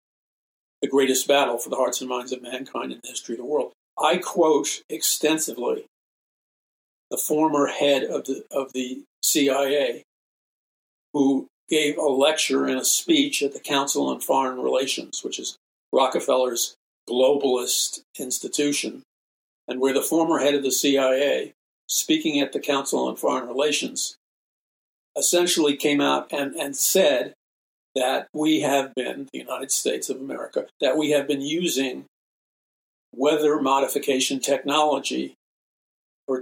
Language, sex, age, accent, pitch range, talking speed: English, male, 50-69, American, 130-155 Hz, 140 wpm